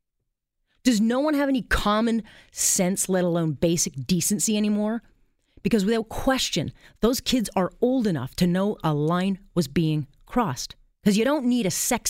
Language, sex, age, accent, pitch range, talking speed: English, female, 30-49, American, 165-225 Hz, 165 wpm